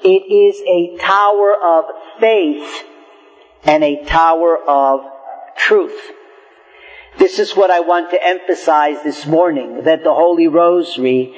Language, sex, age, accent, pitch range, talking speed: English, male, 50-69, American, 145-175 Hz, 125 wpm